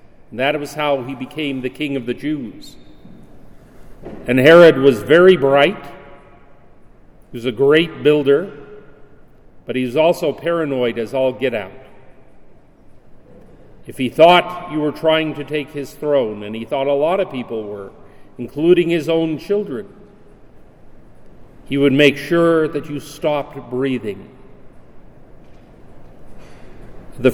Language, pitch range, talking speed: English, 130-165 Hz, 135 wpm